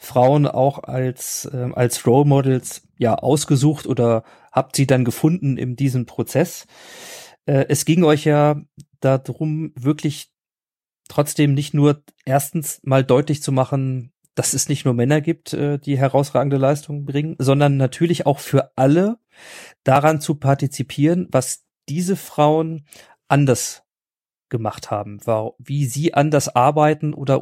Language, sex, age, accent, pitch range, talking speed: German, male, 40-59, German, 125-150 Hz, 140 wpm